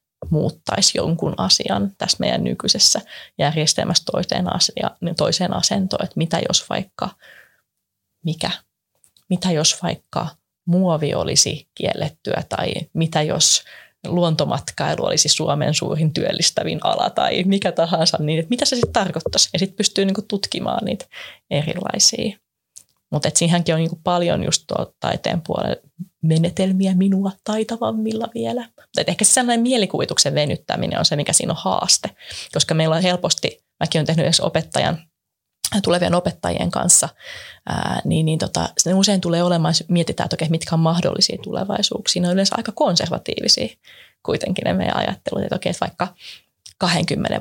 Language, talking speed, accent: Finnish, 135 wpm, native